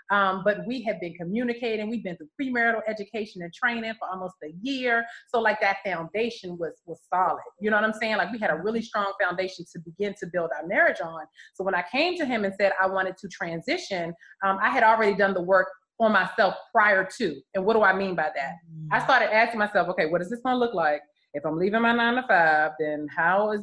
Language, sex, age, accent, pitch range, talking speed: English, female, 30-49, American, 190-255 Hz, 240 wpm